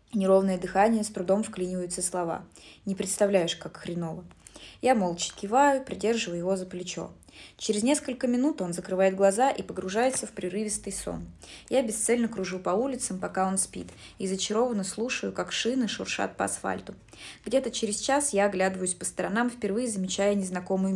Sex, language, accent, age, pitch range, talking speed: female, Russian, native, 20-39, 185-225 Hz, 155 wpm